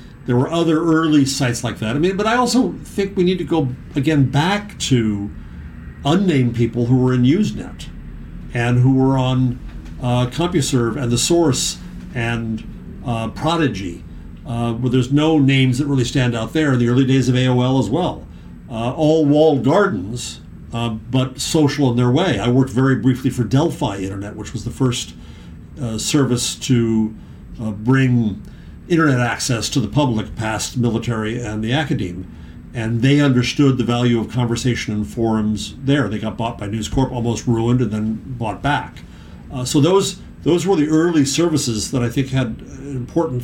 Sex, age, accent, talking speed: male, 50-69, American, 175 wpm